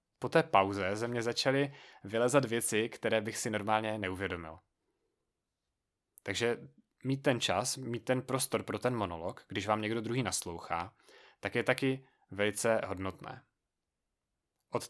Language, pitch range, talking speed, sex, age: Czech, 105-135 Hz, 135 wpm, male, 20-39